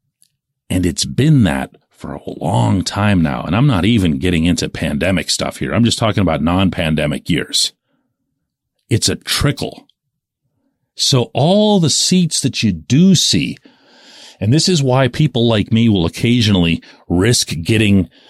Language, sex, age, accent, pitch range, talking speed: English, male, 40-59, American, 100-145 Hz, 150 wpm